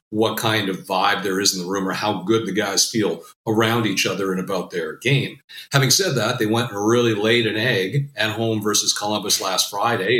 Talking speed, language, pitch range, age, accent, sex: 225 wpm, English, 105-130 Hz, 40-59, American, male